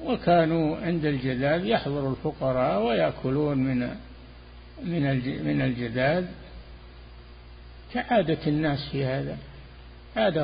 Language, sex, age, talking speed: Arabic, male, 50-69, 80 wpm